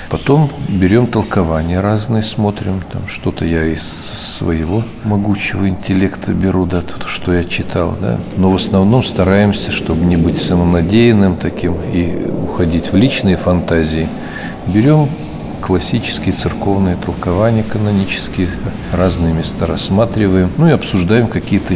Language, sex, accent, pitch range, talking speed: Russian, male, native, 85-100 Hz, 115 wpm